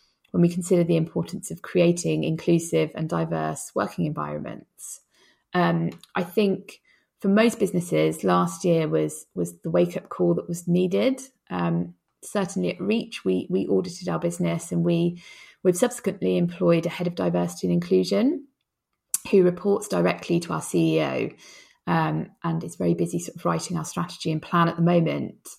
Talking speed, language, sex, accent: 165 wpm, English, female, British